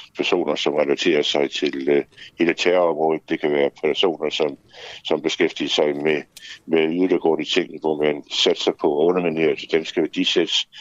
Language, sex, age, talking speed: Danish, male, 60-79, 160 wpm